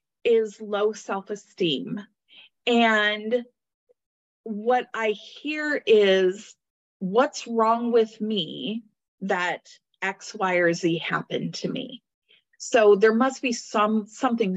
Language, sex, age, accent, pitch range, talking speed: English, female, 30-49, American, 185-230 Hz, 105 wpm